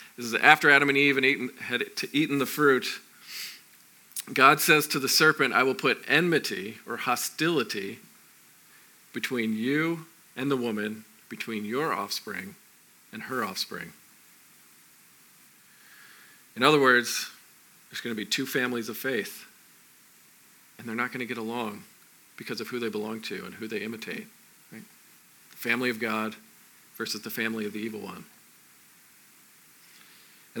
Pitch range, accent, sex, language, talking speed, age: 115-140 Hz, American, male, English, 150 wpm, 40-59